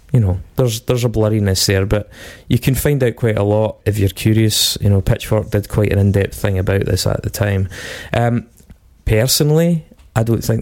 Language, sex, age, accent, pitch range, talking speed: English, male, 20-39, British, 95-115 Hz, 205 wpm